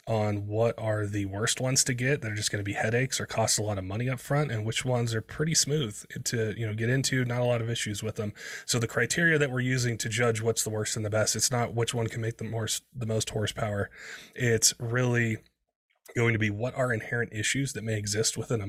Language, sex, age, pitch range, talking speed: English, male, 20-39, 105-120 Hz, 255 wpm